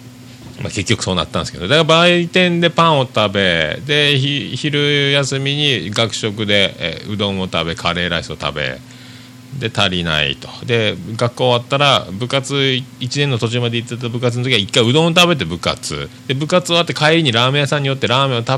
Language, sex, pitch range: Japanese, male, 100-140 Hz